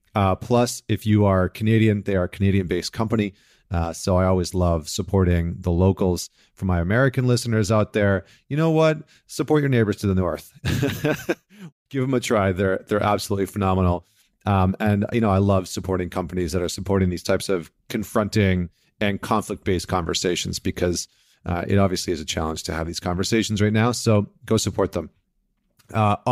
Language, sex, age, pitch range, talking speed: English, male, 40-59, 95-115 Hz, 180 wpm